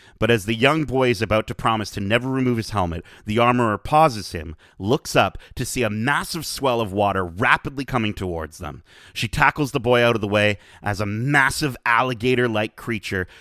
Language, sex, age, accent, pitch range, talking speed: English, male, 30-49, American, 100-135 Hz, 195 wpm